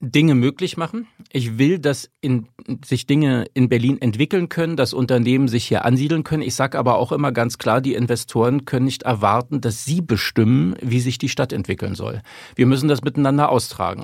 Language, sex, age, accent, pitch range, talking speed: English, male, 50-69, German, 110-140 Hz, 190 wpm